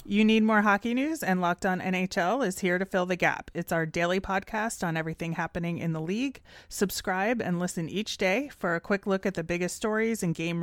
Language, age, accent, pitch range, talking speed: English, 30-49, American, 170-220 Hz, 225 wpm